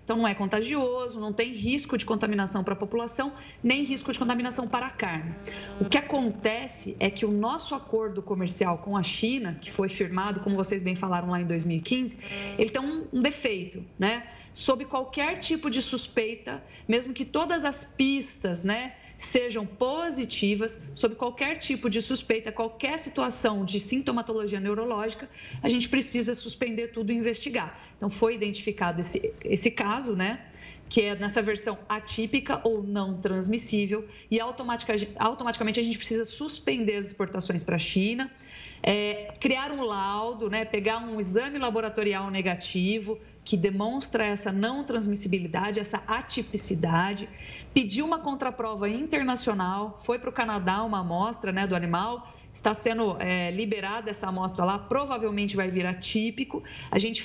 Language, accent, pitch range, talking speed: Portuguese, Brazilian, 205-245 Hz, 150 wpm